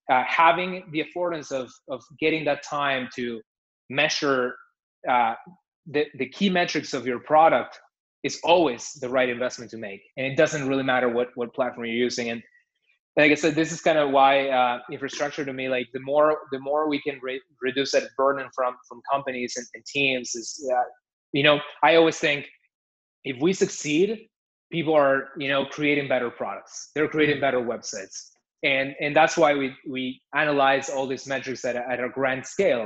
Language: English